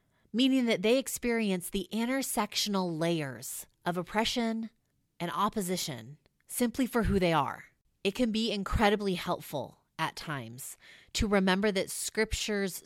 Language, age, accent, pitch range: English, 30-49, American, 155-195 Hz